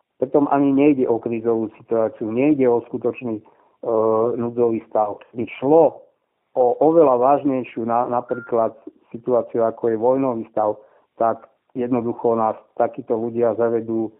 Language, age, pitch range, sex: Slovak, 50-69, 115-130 Hz, male